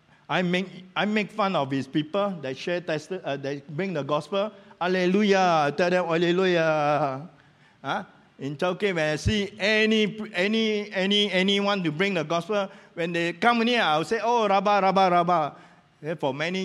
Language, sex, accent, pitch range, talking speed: English, male, Malaysian, 145-185 Hz, 170 wpm